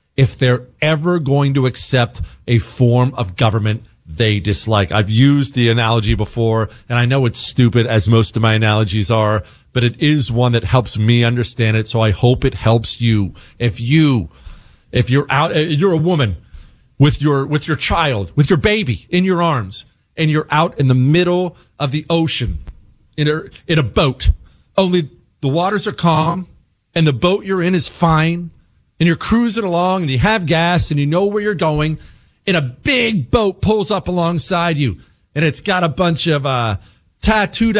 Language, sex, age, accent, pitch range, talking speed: English, male, 40-59, American, 115-190 Hz, 185 wpm